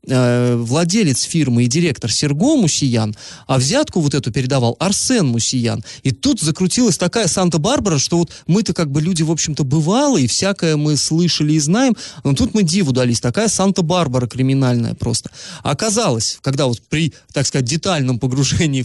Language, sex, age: Russian, male, 20-39